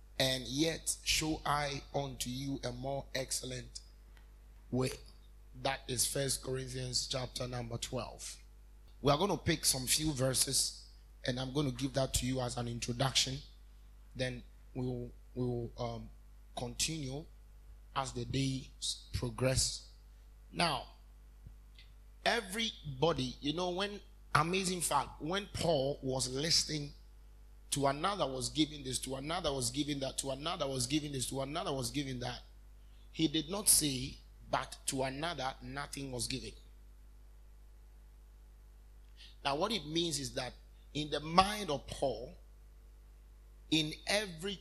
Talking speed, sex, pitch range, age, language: 135 wpm, male, 115-145 Hz, 30-49, English